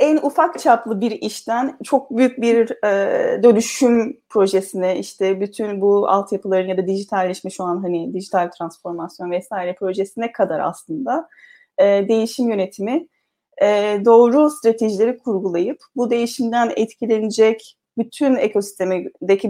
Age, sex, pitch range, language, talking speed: 30-49, female, 185-230 Hz, Turkish, 120 wpm